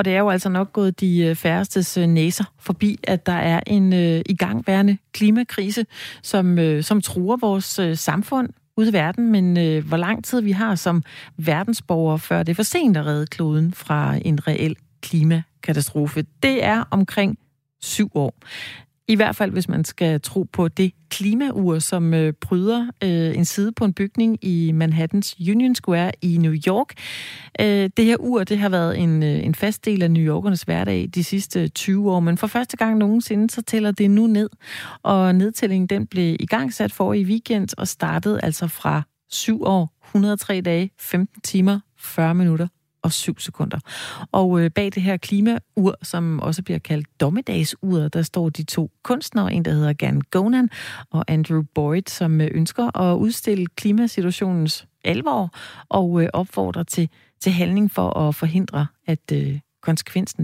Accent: native